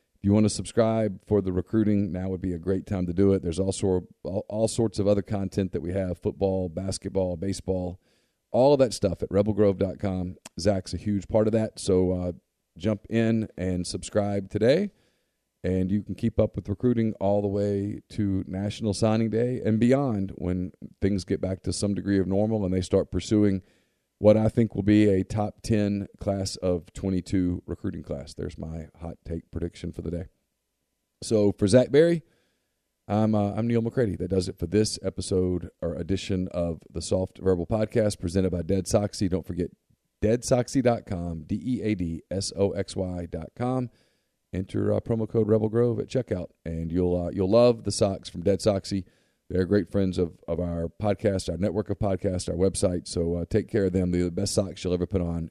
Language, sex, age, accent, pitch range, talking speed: English, male, 40-59, American, 90-105 Hz, 200 wpm